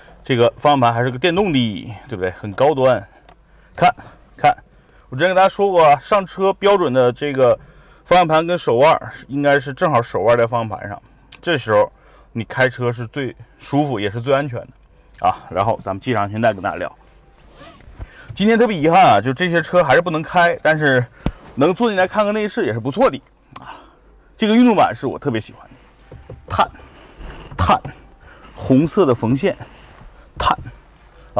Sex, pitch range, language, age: male, 115-170 Hz, Chinese, 30-49